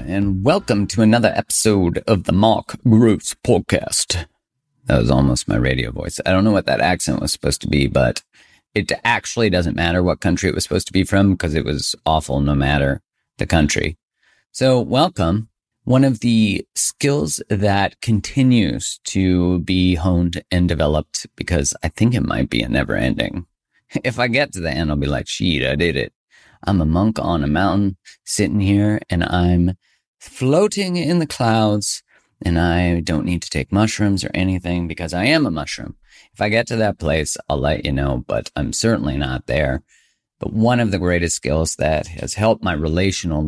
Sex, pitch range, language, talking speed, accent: male, 85-105 Hz, English, 190 wpm, American